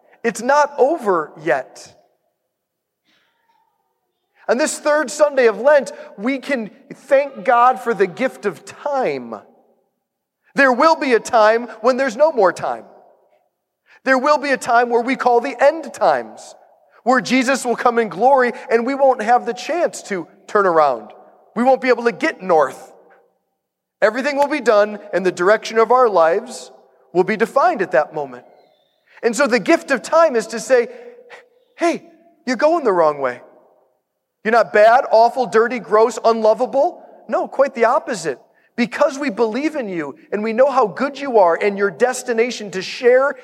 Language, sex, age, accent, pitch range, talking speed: English, male, 40-59, American, 225-285 Hz, 165 wpm